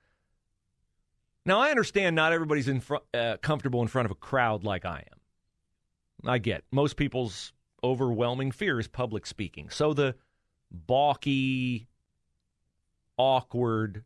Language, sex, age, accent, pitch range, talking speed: English, male, 40-59, American, 105-150 Hz, 130 wpm